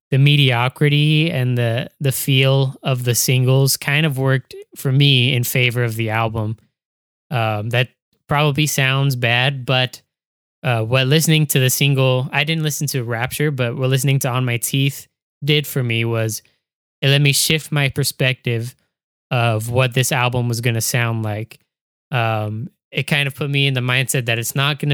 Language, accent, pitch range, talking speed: English, American, 120-145 Hz, 180 wpm